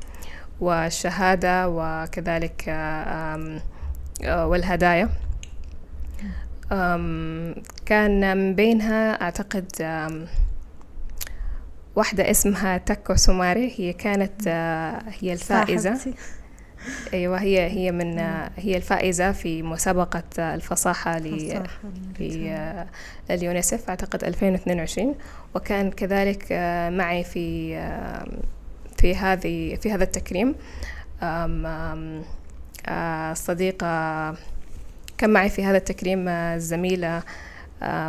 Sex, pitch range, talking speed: female, 160-195 Hz, 70 wpm